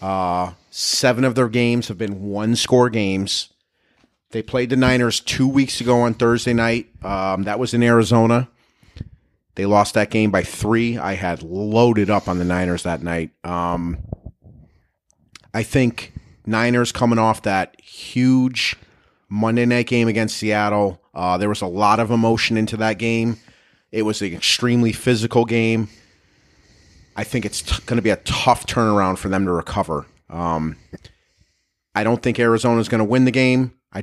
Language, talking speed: English, 170 wpm